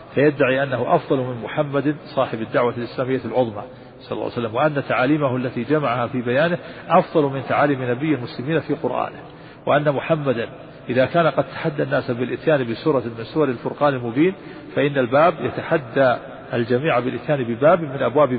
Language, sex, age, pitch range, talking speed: Arabic, male, 50-69, 120-150 Hz, 155 wpm